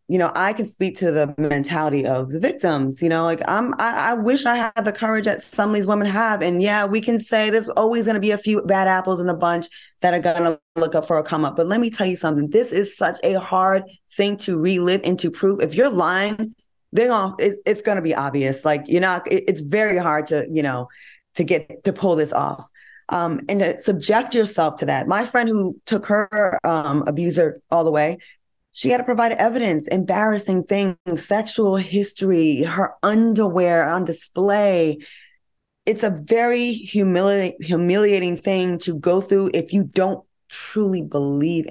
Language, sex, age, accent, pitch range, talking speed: English, female, 20-39, American, 170-215 Hz, 205 wpm